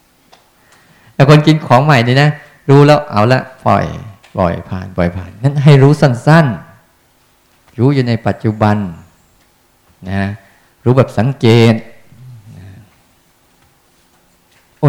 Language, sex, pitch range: Thai, male, 105-140 Hz